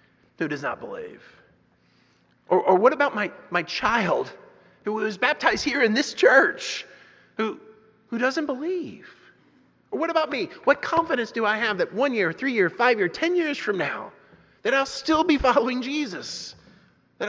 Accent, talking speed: American, 170 wpm